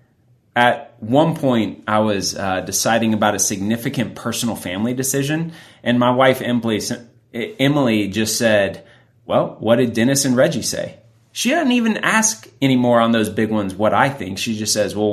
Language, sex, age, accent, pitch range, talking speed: English, male, 30-49, American, 105-135 Hz, 165 wpm